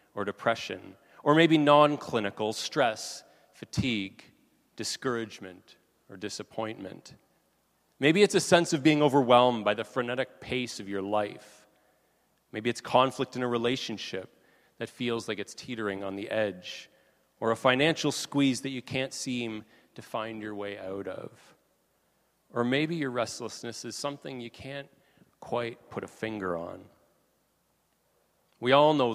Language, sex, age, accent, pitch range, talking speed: English, male, 30-49, American, 105-140 Hz, 140 wpm